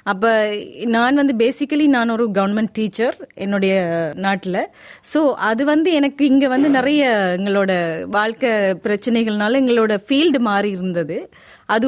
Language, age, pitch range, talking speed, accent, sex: Tamil, 20-39, 220-285 Hz, 125 wpm, native, female